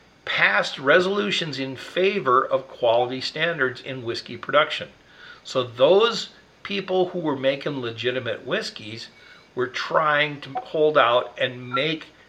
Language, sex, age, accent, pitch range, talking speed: English, male, 50-69, American, 130-165 Hz, 120 wpm